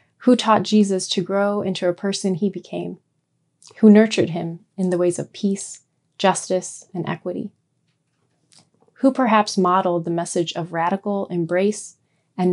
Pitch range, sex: 170-200 Hz, female